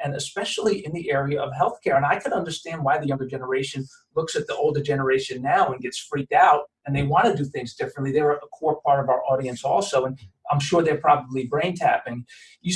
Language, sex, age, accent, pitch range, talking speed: English, male, 40-59, American, 140-185 Hz, 225 wpm